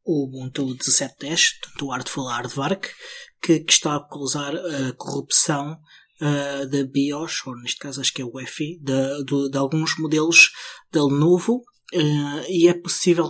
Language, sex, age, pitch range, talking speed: Portuguese, male, 20-39, 135-165 Hz, 160 wpm